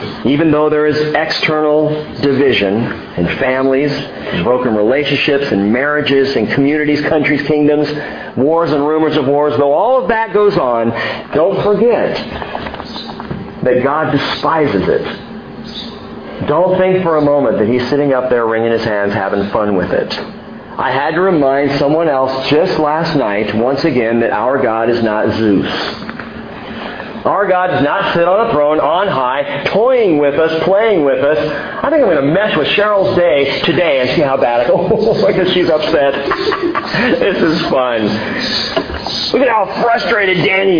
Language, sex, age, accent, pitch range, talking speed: English, male, 50-69, American, 140-215 Hz, 160 wpm